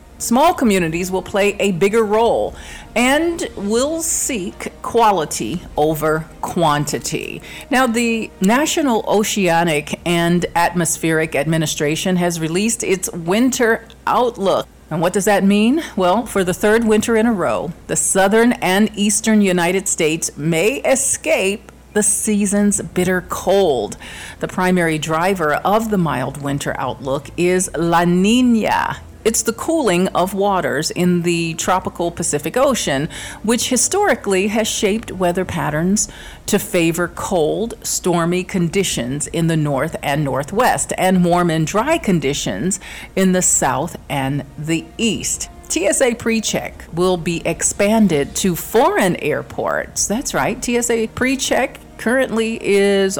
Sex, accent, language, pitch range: female, American, English, 165-215 Hz